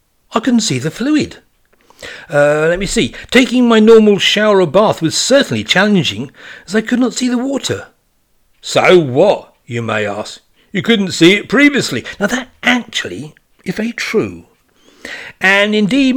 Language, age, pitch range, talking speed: English, 60-79, 155-230 Hz, 160 wpm